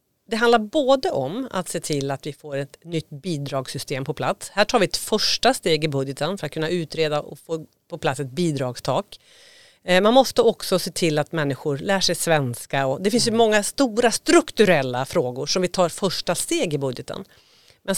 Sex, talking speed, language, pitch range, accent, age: female, 195 wpm, Swedish, 150-210 Hz, native, 40-59